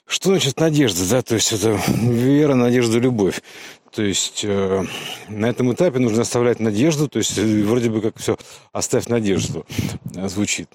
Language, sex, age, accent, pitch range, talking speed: Russian, male, 50-69, native, 100-125 Hz, 150 wpm